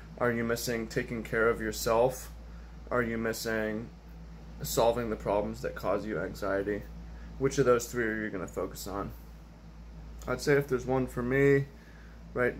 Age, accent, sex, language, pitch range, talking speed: 20-39, American, male, English, 105-130 Hz, 160 wpm